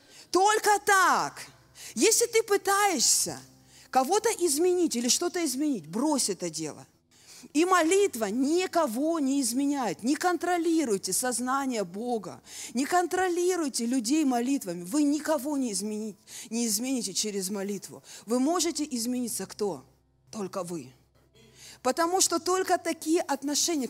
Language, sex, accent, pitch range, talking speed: Russian, female, native, 215-305 Hz, 110 wpm